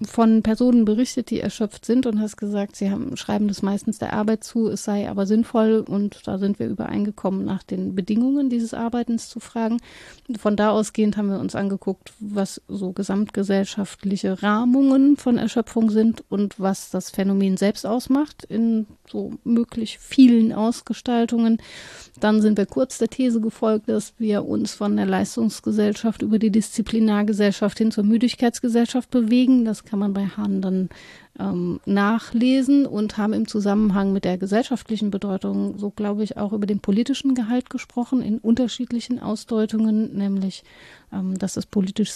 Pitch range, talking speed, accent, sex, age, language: 200-230 Hz, 160 wpm, German, female, 30-49, German